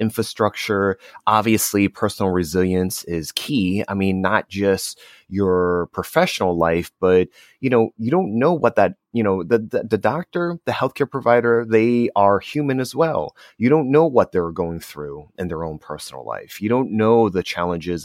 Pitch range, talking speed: 90-115 Hz, 175 wpm